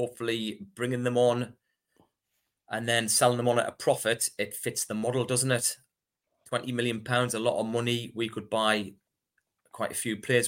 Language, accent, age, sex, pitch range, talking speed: English, British, 30-49, male, 110-125 Hz, 180 wpm